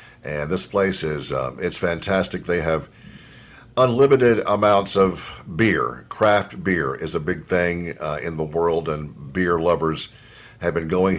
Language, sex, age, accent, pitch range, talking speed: English, male, 50-69, American, 80-100 Hz, 155 wpm